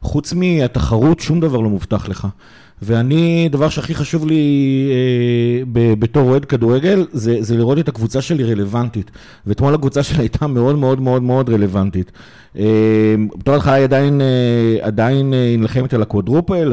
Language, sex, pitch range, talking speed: Hebrew, male, 115-155 Hz, 155 wpm